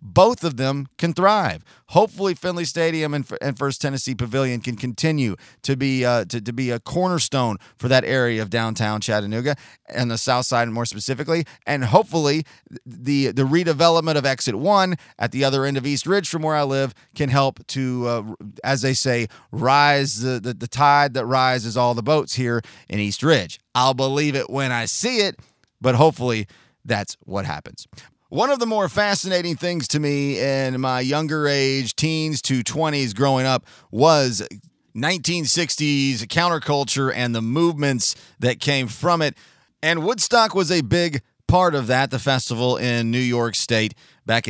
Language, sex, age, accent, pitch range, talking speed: English, male, 30-49, American, 120-165 Hz, 175 wpm